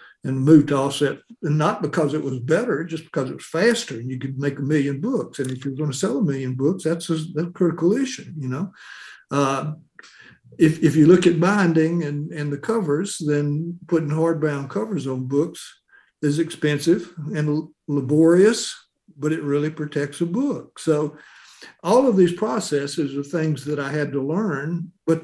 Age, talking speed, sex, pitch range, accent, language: 60-79, 190 wpm, male, 140-170 Hz, American, English